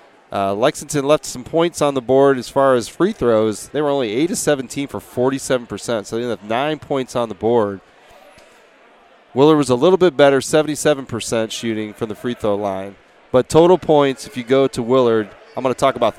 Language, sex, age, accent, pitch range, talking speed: English, male, 30-49, American, 115-145 Hz, 195 wpm